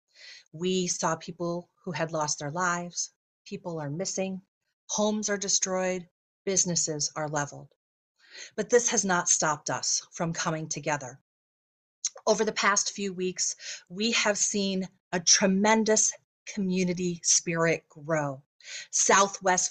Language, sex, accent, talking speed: English, female, American, 120 wpm